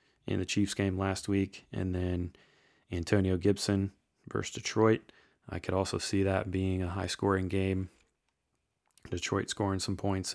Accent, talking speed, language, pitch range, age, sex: American, 145 wpm, English, 90-105 Hz, 30-49, male